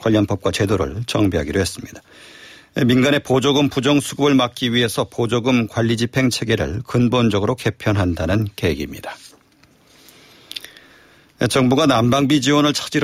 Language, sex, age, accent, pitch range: Korean, male, 40-59, native, 105-130 Hz